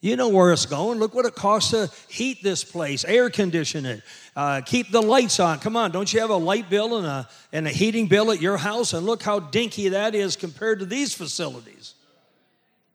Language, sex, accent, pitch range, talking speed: English, male, American, 145-205 Hz, 220 wpm